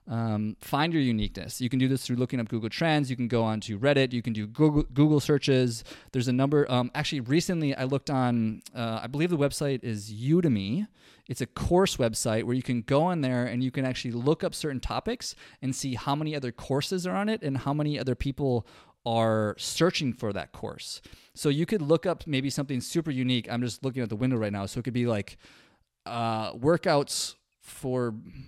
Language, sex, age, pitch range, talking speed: English, male, 20-39, 120-150 Hz, 215 wpm